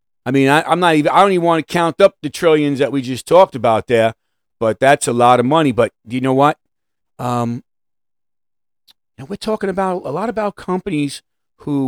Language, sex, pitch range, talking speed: English, male, 120-170 Hz, 205 wpm